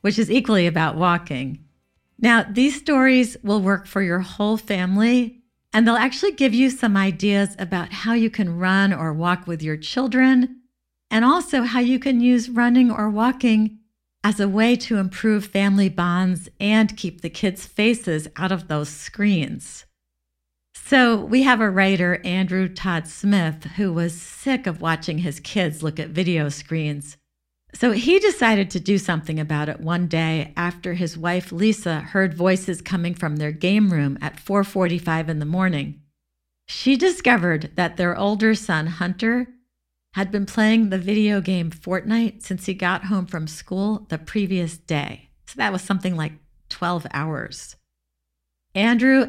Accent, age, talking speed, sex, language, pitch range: American, 50-69, 160 wpm, female, English, 165-220 Hz